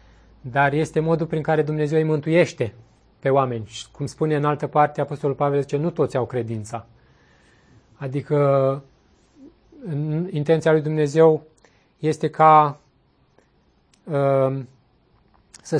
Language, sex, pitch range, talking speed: Romanian, male, 125-155 Hz, 115 wpm